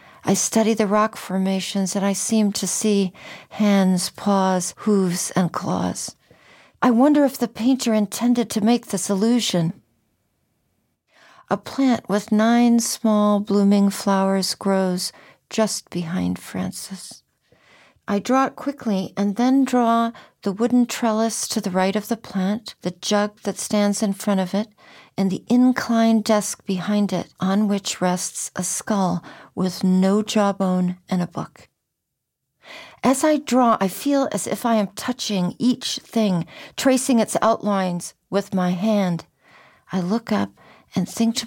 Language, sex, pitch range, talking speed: English, female, 185-225 Hz, 145 wpm